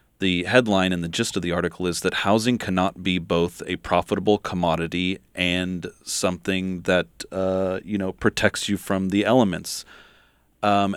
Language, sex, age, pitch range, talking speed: English, male, 30-49, 90-105 Hz, 160 wpm